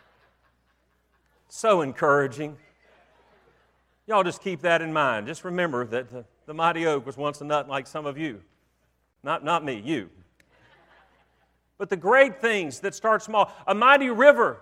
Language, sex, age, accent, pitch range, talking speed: English, male, 50-69, American, 150-220 Hz, 150 wpm